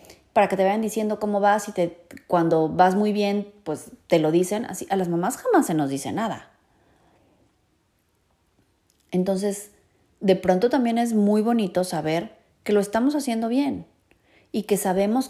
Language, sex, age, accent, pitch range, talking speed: Spanish, female, 30-49, Mexican, 165-210 Hz, 165 wpm